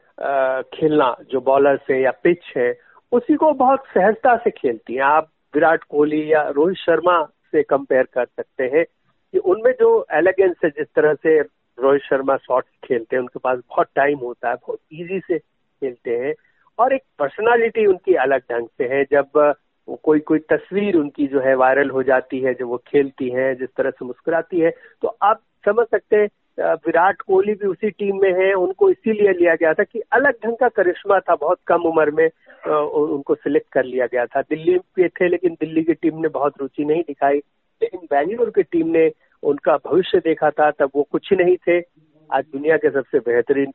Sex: male